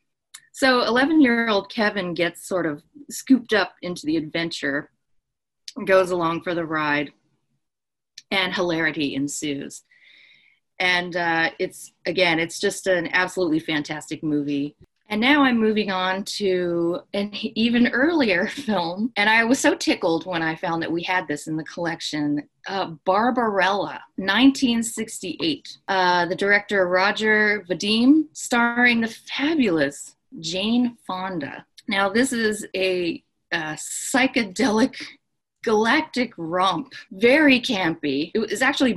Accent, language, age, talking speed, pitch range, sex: American, English, 30-49, 125 wpm, 165-235 Hz, female